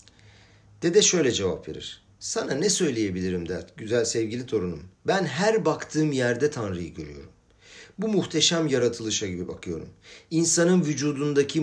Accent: native